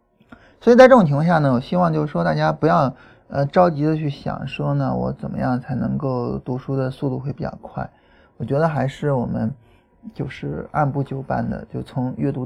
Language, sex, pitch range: Chinese, male, 125-160 Hz